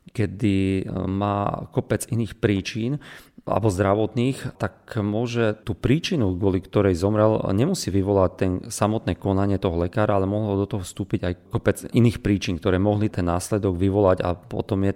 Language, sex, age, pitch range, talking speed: Slovak, male, 40-59, 90-110 Hz, 150 wpm